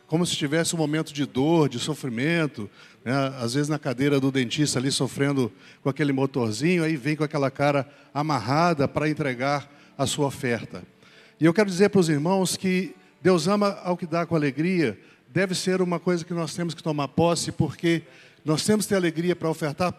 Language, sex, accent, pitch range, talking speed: Portuguese, male, Brazilian, 145-180 Hz, 195 wpm